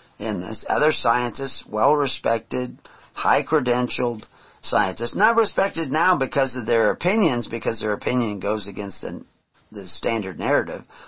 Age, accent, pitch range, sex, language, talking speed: 50-69, American, 115-180 Hz, male, English, 135 wpm